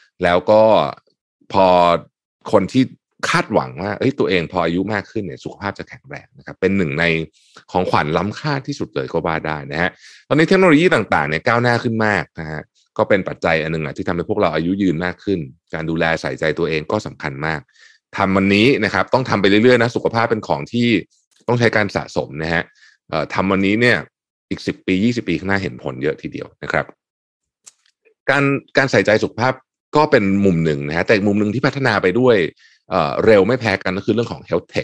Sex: male